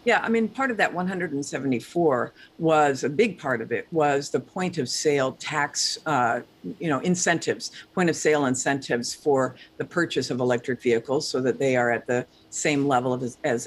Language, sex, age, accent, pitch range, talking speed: English, female, 50-69, American, 130-175 Hz, 190 wpm